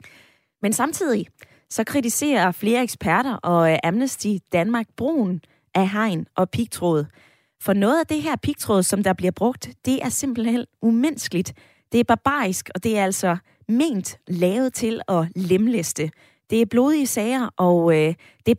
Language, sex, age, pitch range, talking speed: Danish, female, 20-39, 180-240 Hz, 160 wpm